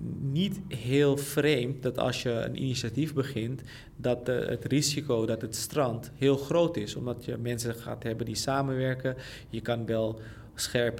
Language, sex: Dutch, male